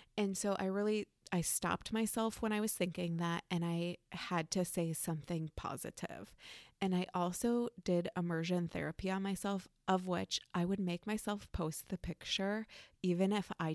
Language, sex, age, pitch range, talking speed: English, female, 20-39, 170-220 Hz, 170 wpm